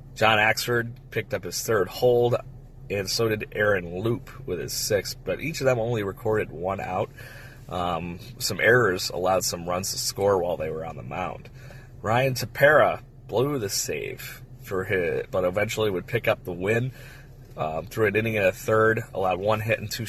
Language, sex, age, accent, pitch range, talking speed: English, male, 30-49, American, 100-130 Hz, 190 wpm